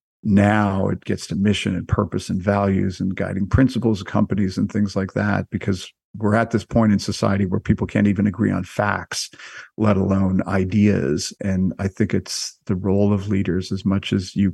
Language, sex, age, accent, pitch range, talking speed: English, male, 50-69, American, 95-105 Hz, 195 wpm